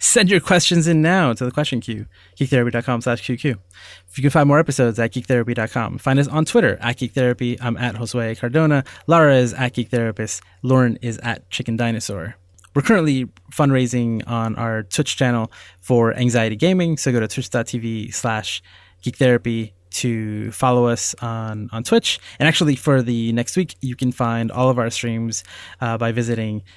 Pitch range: 115-130 Hz